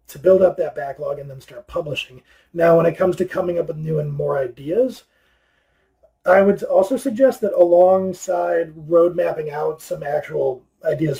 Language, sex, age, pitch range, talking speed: English, male, 30-49, 150-190 Hz, 175 wpm